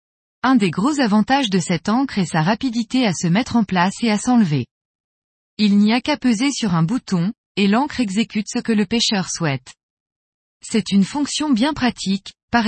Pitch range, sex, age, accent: 185-245 Hz, female, 20-39, French